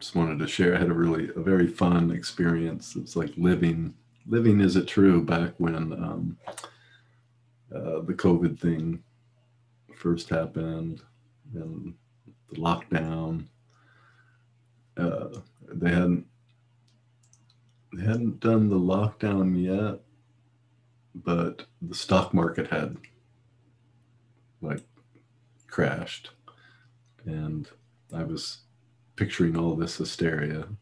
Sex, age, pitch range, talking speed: male, 40-59, 85-120 Hz, 105 wpm